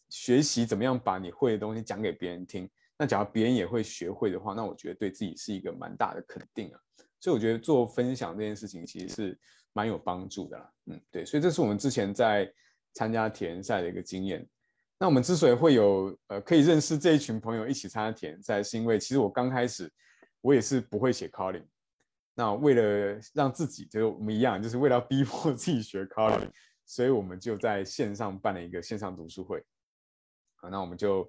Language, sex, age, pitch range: Chinese, male, 20-39, 95-115 Hz